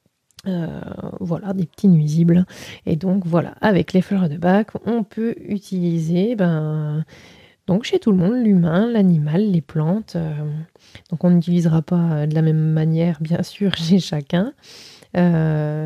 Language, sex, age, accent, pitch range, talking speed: French, female, 20-39, French, 170-205 Hz, 150 wpm